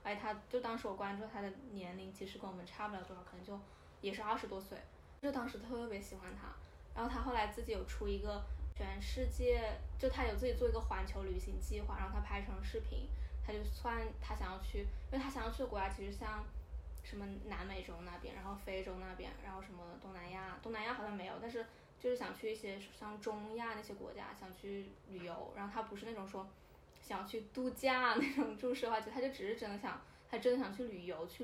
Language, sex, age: Chinese, female, 10-29